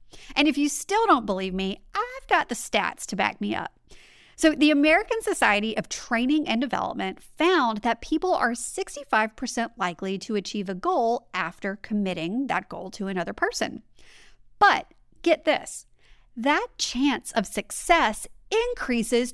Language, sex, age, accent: English, female, 40-59, American